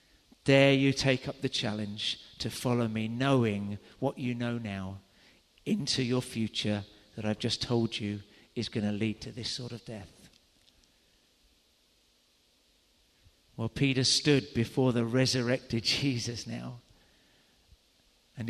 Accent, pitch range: British, 110-135 Hz